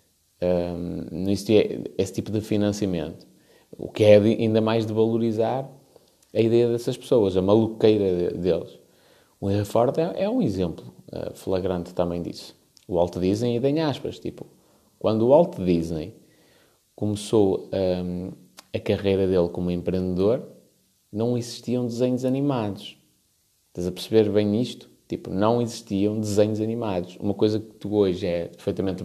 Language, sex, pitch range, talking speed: Portuguese, male, 95-120 Hz, 140 wpm